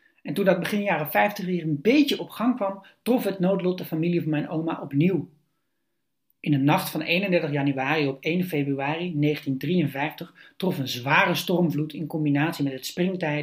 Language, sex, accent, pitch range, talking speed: Dutch, male, Dutch, 145-185 Hz, 180 wpm